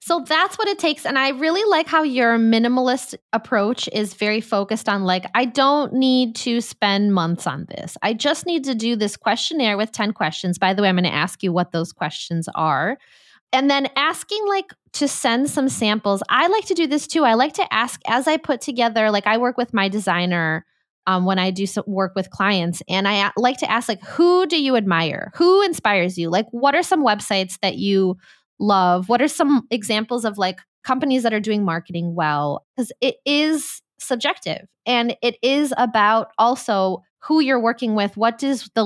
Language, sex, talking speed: English, female, 205 wpm